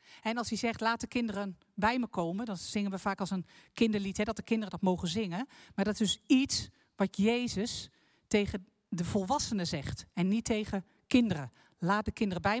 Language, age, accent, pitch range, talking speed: Dutch, 50-69, Dutch, 200-245 Hz, 200 wpm